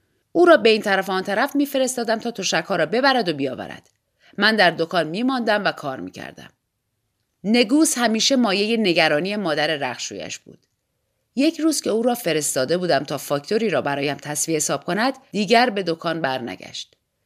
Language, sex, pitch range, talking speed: Persian, female, 165-235 Hz, 170 wpm